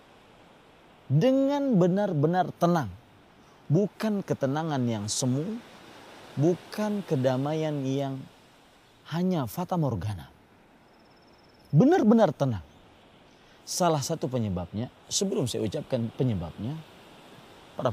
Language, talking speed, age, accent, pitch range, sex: Indonesian, 75 wpm, 30-49, native, 115-165 Hz, male